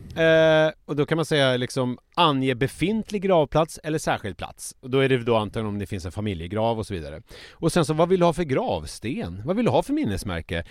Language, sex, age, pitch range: Swedish, male, 30-49, 100-150 Hz